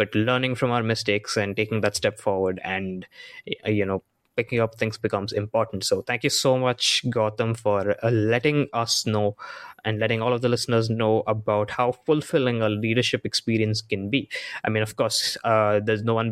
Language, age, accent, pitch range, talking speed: English, 20-39, Indian, 105-120 Hz, 190 wpm